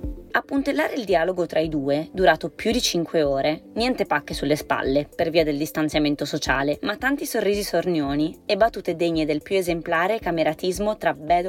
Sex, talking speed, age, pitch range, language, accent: female, 180 wpm, 20-39, 150-200 Hz, Italian, native